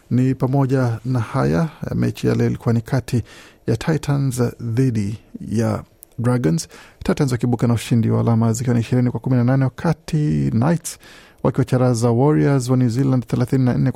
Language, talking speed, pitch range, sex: Swahili, 140 wpm, 115-135 Hz, male